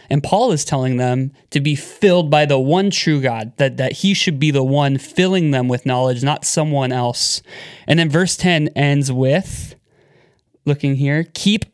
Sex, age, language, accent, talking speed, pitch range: male, 20-39, English, American, 185 wpm, 130-170 Hz